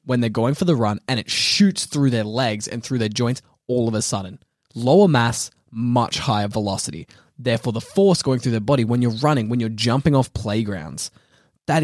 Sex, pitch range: male, 110-140 Hz